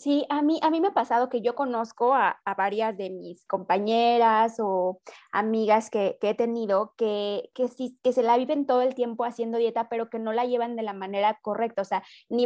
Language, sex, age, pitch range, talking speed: Spanish, female, 20-39, 215-285 Hz, 225 wpm